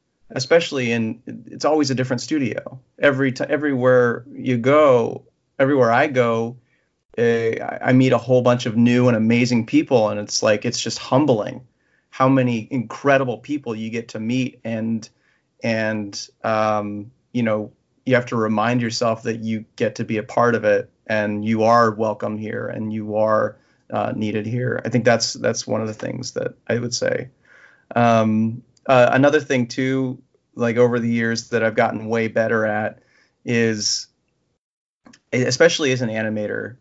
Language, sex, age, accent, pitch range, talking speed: English, male, 30-49, American, 110-125 Hz, 165 wpm